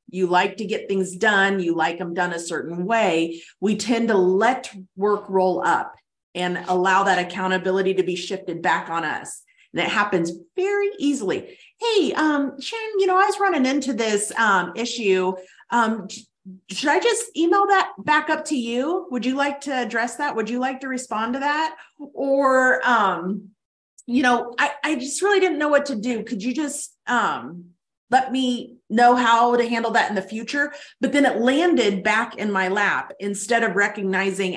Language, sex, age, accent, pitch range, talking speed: English, female, 30-49, American, 190-260 Hz, 185 wpm